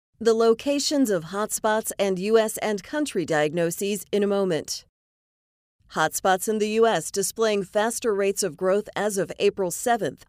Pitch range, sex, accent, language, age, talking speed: 180-225 Hz, female, American, English, 40-59, 145 wpm